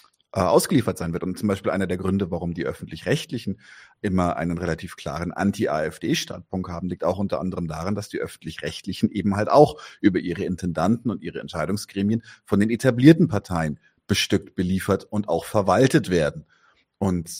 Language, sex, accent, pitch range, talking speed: German, male, German, 95-120 Hz, 165 wpm